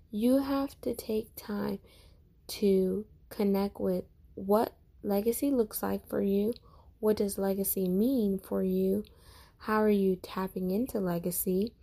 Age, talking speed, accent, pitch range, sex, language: 10-29, 130 wpm, American, 185-210 Hz, female, English